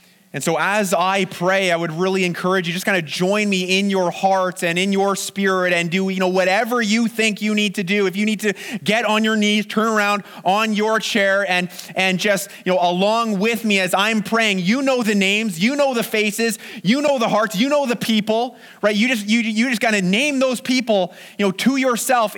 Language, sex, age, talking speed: English, male, 30-49, 235 wpm